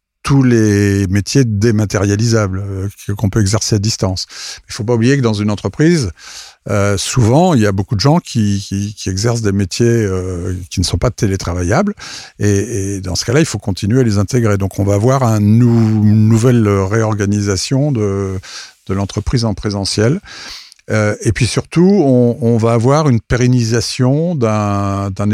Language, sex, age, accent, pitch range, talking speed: French, male, 50-69, French, 100-120 Hz, 180 wpm